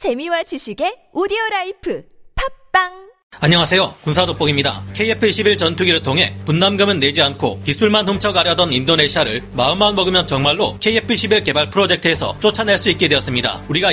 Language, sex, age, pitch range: Korean, male, 40-59, 155-205 Hz